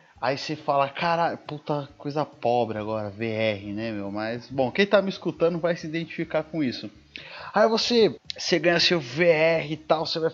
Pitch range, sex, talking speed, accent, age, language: 130-185 Hz, male, 185 wpm, Brazilian, 30-49, Portuguese